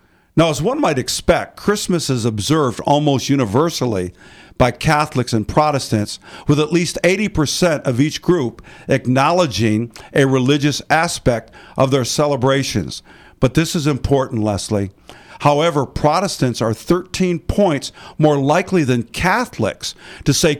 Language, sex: English, male